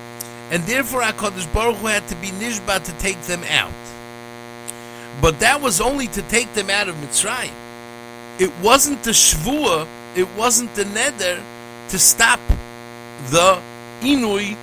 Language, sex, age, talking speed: English, male, 50-69, 145 wpm